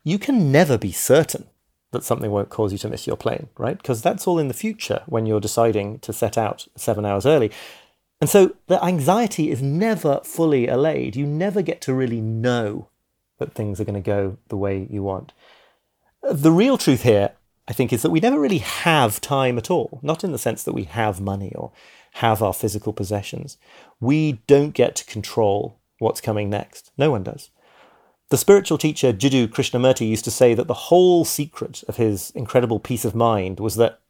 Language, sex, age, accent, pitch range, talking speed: English, male, 30-49, British, 110-145 Hz, 200 wpm